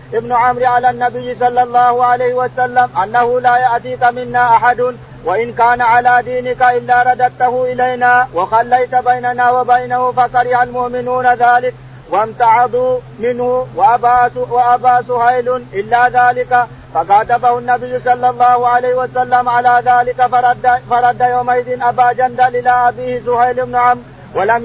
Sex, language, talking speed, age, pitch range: male, Arabic, 120 wpm, 50-69, 245-250 Hz